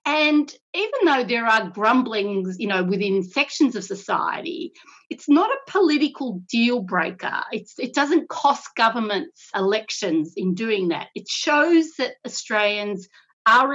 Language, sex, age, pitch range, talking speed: English, female, 50-69, 190-280 Hz, 130 wpm